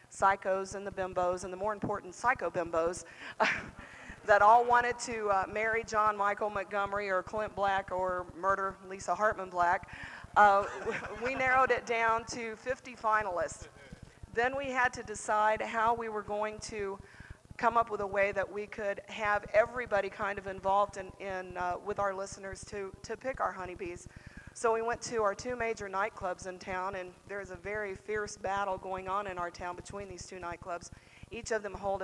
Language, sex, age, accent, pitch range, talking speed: English, female, 40-59, American, 185-210 Hz, 185 wpm